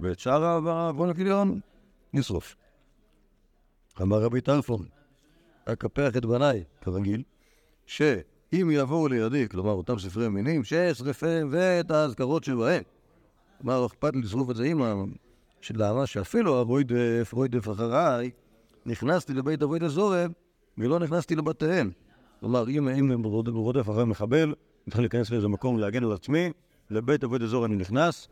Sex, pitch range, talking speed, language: male, 105-150 Hz, 125 wpm, Hebrew